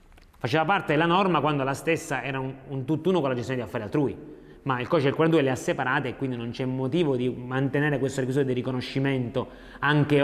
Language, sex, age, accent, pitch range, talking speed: Italian, male, 30-49, native, 125-165 Hz, 210 wpm